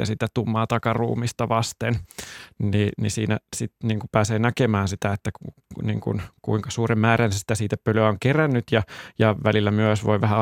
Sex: male